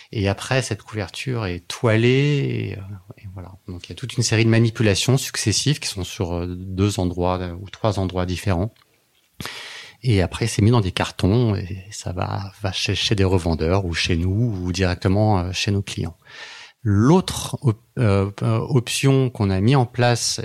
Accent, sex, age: French, male, 30-49